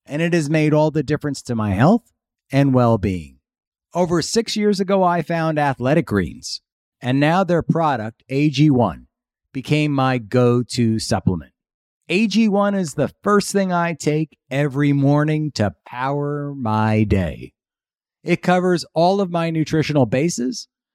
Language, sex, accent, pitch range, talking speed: English, male, American, 115-160 Hz, 140 wpm